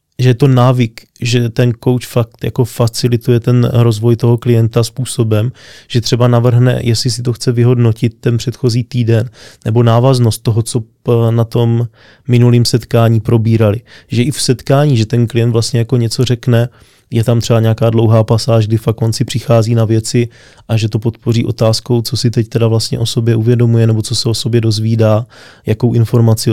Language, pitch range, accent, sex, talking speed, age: Czech, 110-125 Hz, native, male, 180 wpm, 20-39